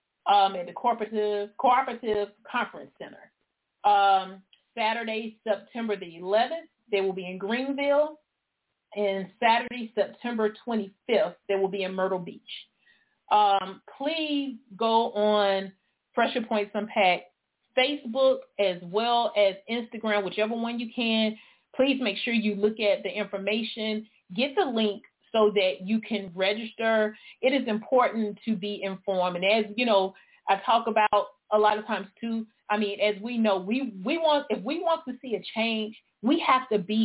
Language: English